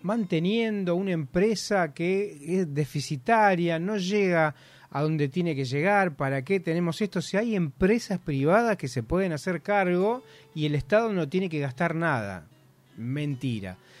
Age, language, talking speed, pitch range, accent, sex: 30-49, Spanish, 150 wpm, 150-195 Hz, Argentinian, male